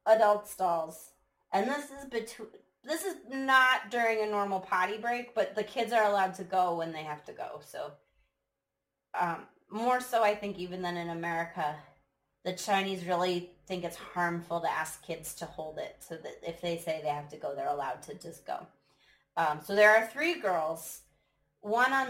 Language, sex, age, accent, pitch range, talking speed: English, female, 20-39, American, 170-240 Hz, 190 wpm